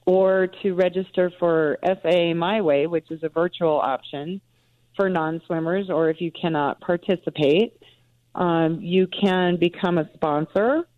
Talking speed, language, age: 135 wpm, English, 40-59